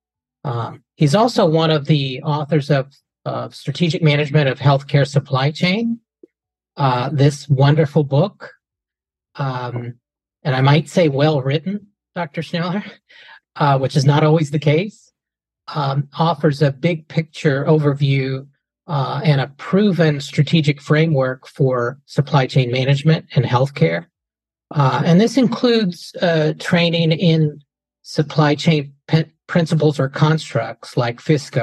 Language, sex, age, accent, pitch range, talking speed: English, male, 40-59, American, 135-165 Hz, 130 wpm